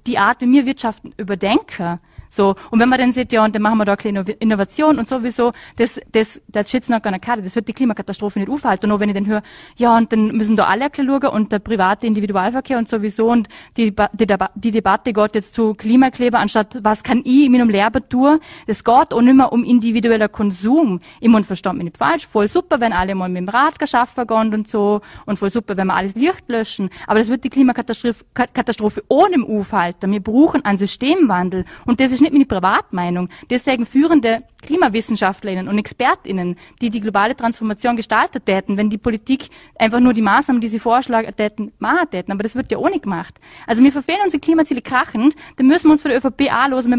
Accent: German